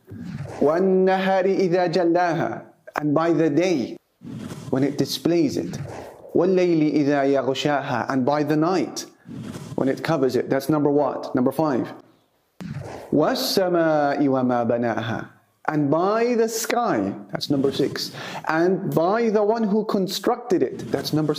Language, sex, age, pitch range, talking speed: English, male, 30-49, 130-185 Hz, 125 wpm